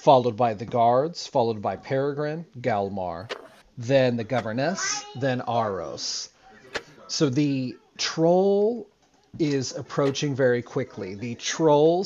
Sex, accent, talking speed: male, American, 110 wpm